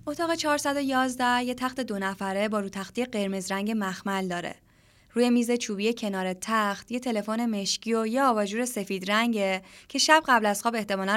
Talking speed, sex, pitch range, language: 170 wpm, female, 200-245 Hz, Persian